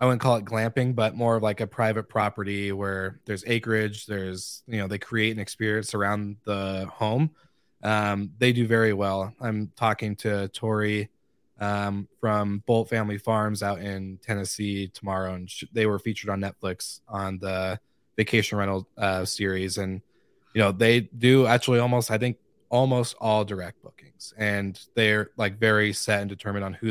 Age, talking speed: 20-39, 170 wpm